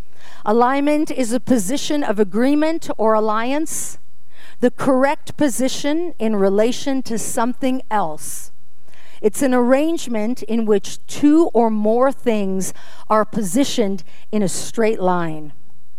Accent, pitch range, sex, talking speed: American, 185-250 Hz, female, 115 wpm